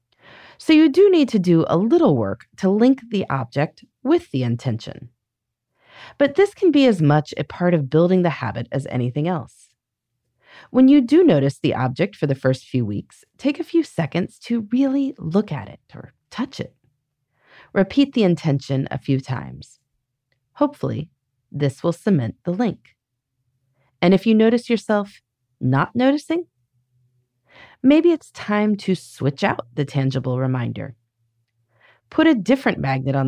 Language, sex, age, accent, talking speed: English, female, 30-49, American, 155 wpm